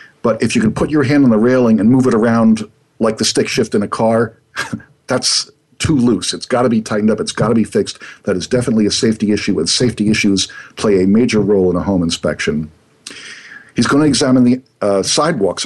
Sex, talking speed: male, 225 wpm